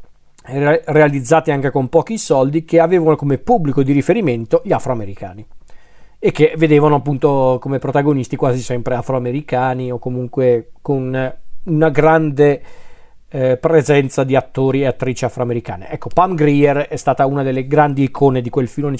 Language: Italian